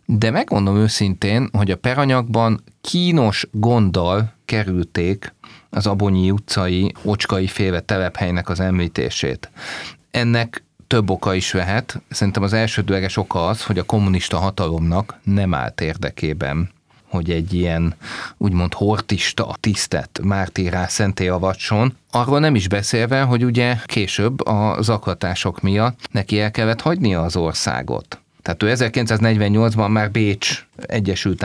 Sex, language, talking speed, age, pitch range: male, Hungarian, 125 wpm, 30-49, 90-115 Hz